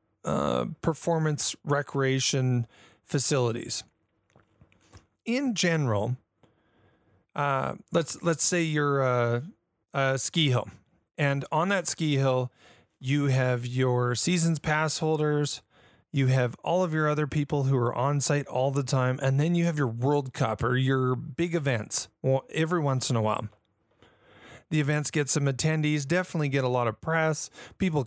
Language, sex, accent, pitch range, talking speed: English, male, American, 125-155 Hz, 145 wpm